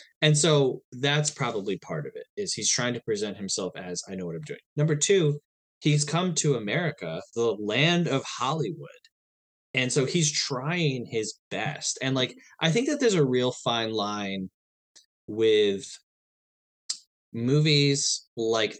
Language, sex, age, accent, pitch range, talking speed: English, male, 20-39, American, 110-155 Hz, 155 wpm